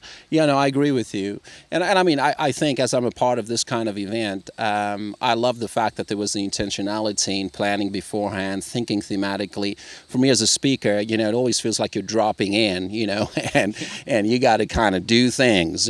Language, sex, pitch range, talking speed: English, male, 105-125 Hz, 235 wpm